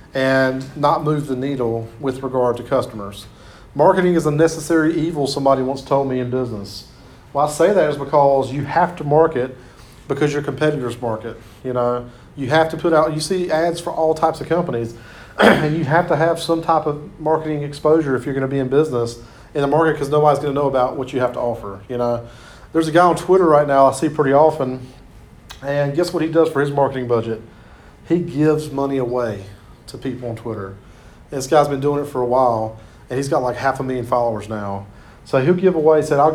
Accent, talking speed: American, 220 wpm